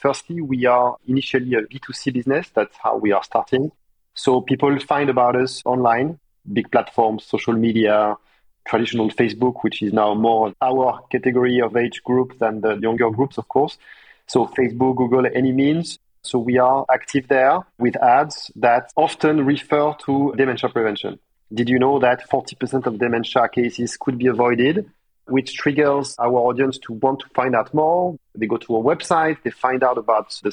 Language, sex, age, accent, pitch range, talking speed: English, male, 40-59, French, 120-140 Hz, 175 wpm